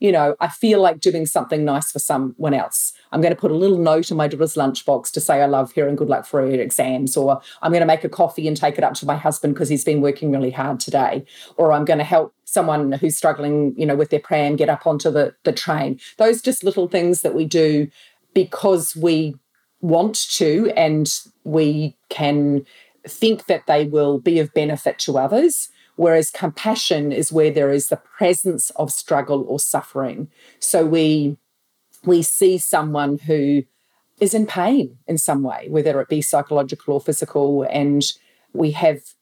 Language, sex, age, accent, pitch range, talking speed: English, female, 40-59, Australian, 145-180 Hz, 195 wpm